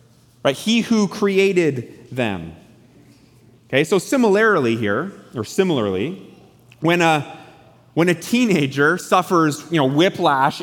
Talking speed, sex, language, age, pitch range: 115 wpm, male, English, 30-49, 150-220 Hz